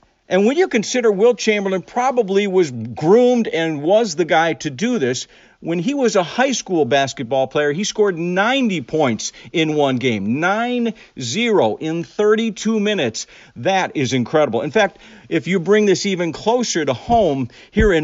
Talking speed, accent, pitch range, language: 165 wpm, American, 140-200 Hz, English